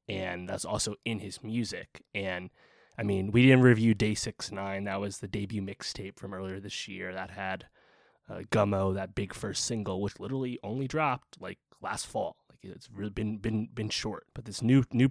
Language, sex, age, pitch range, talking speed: English, male, 20-39, 95-115 Hz, 200 wpm